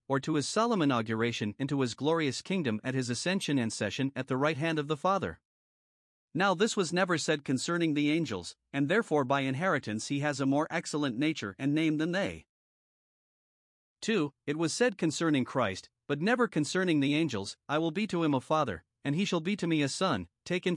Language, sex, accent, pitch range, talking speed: English, male, American, 130-165 Hz, 200 wpm